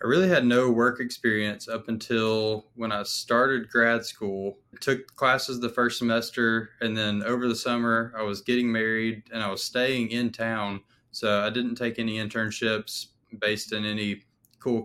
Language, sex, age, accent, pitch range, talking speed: English, male, 20-39, American, 105-115 Hz, 180 wpm